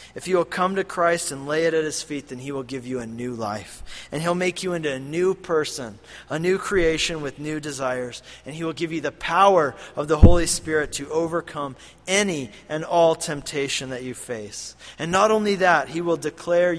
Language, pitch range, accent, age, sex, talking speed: English, 125-170 Hz, American, 40-59, male, 220 wpm